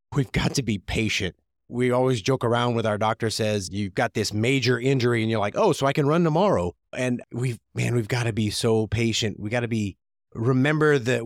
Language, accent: English, American